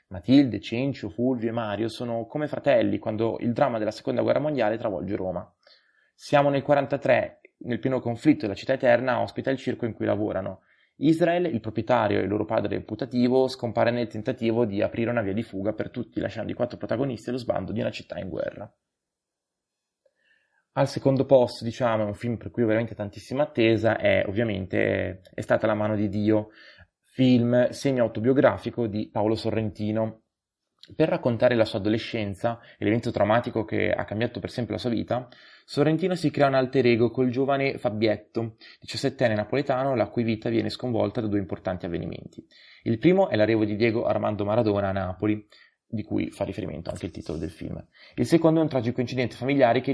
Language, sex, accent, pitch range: Italian, male, native, 105-125 Hz